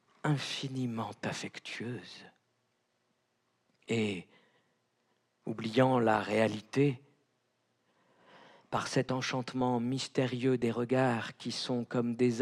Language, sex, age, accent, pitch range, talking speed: French, male, 50-69, French, 115-125 Hz, 75 wpm